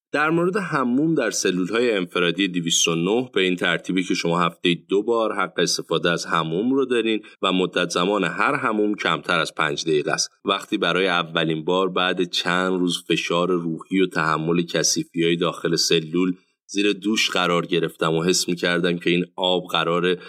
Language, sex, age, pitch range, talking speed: Persian, male, 30-49, 85-115 Hz, 175 wpm